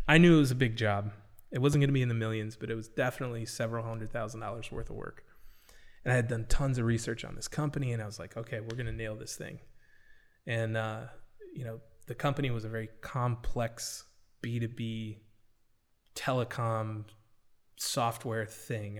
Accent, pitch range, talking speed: American, 110-140 Hz, 195 wpm